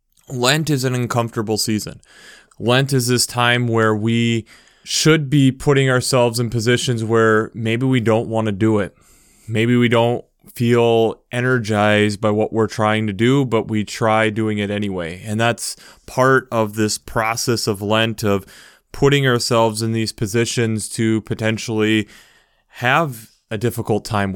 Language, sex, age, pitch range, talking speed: English, male, 20-39, 110-125 Hz, 155 wpm